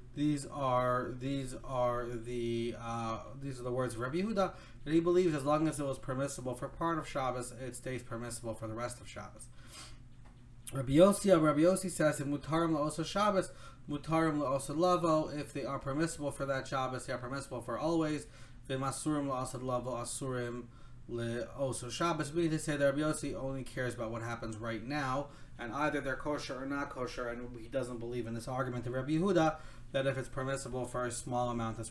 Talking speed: 170 wpm